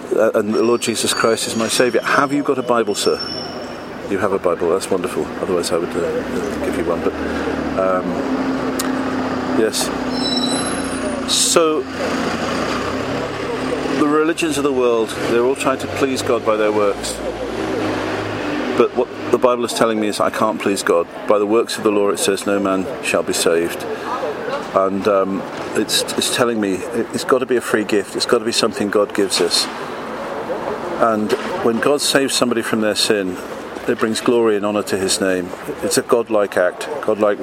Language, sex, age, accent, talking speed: English, male, 50-69, British, 180 wpm